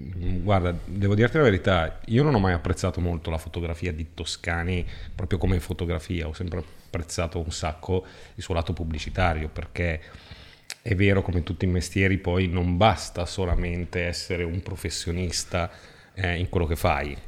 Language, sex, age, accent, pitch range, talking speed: Italian, male, 30-49, native, 85-95 Hz, 165 wpm